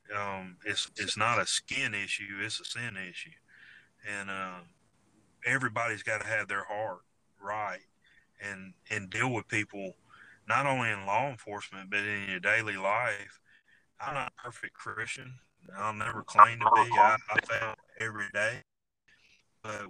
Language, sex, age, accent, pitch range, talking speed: English, male, 30-49, American, 100-115 Hz, 155 wpm